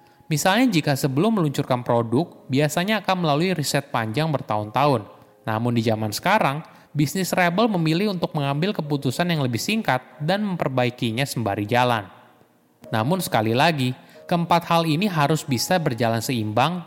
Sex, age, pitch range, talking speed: male, 20-39, 110-165 Hz, 135 wpm